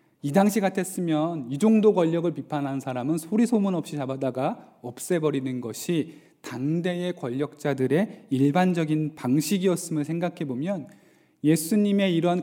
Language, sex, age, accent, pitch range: Korean, male, 20-39, native, 145-200 Hz